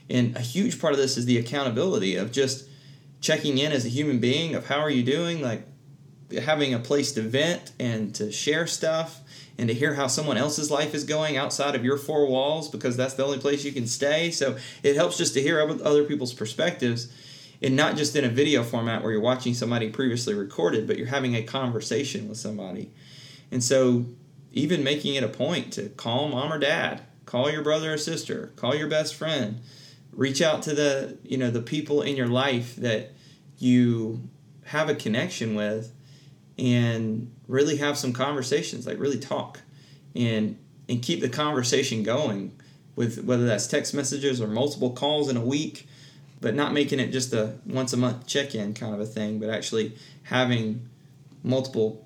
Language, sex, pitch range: English, male, 120-145 Hz